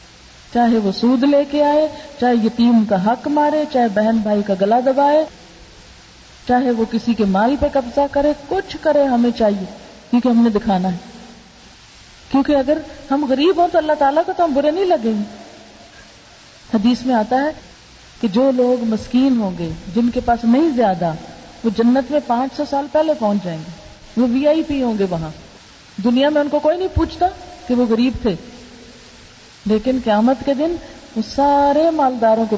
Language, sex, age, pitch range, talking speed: Urdu, female, 40-59, 200-275 Hz, 185 wpm